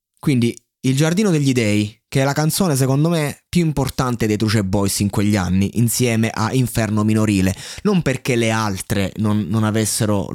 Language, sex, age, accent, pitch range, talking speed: Italian, male, 20-39, native, 105-140 Hz, 175 wpm